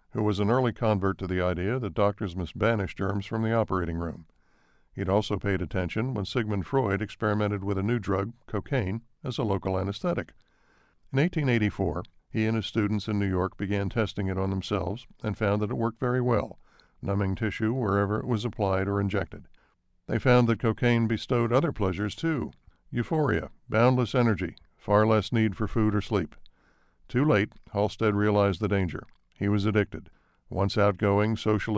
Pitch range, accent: 95-115 Hz, American